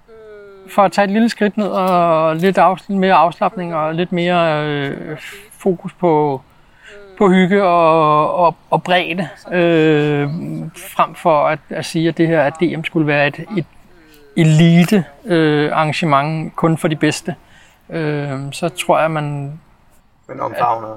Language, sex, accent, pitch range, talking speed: Danish, male, native, 170-210 Hz, 150 wpm